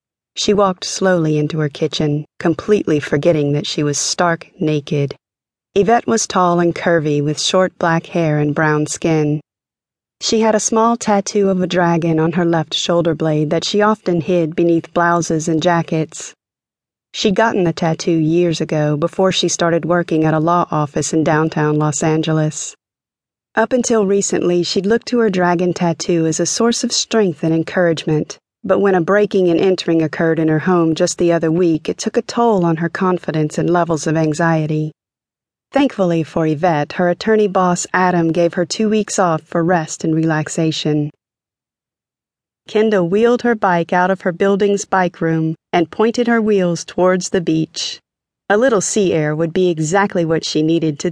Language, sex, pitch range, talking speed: English, female, 160-195 Hz, 175 wpm